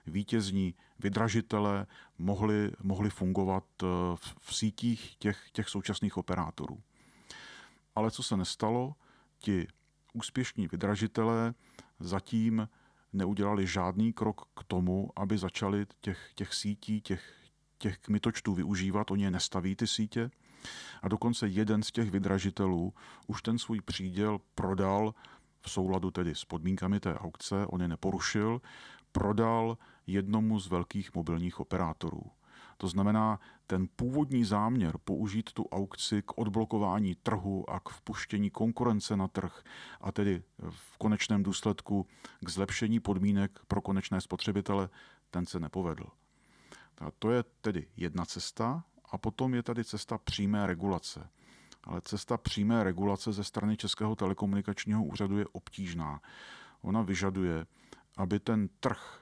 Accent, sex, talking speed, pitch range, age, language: native, male, 125 wpm, 95-110 Hz, 40-59, Czech